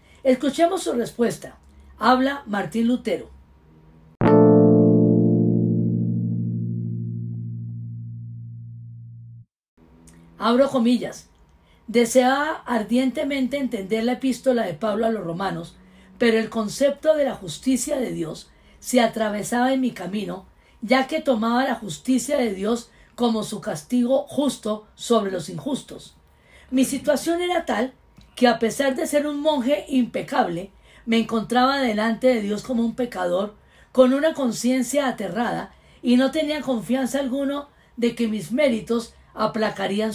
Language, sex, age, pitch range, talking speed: Spanish, female, 40-59, 180-255 Hz, 120 wpm